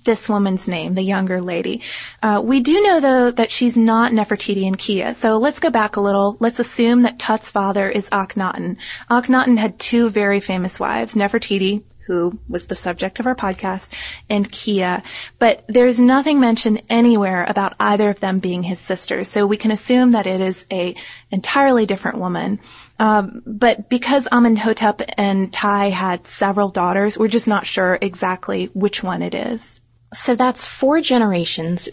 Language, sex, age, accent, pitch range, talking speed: English, female, 20-39, American, 185-225 Hz, 170 wpm